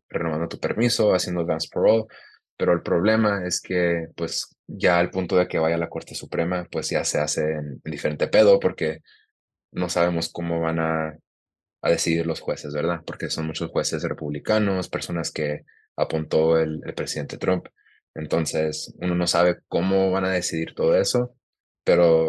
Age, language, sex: 20-39, English, male